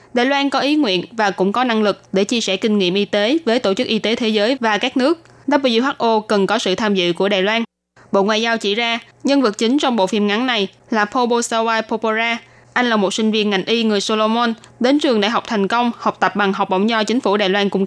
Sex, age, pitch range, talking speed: female, 20-39, 200-240 Hz, 260 wpm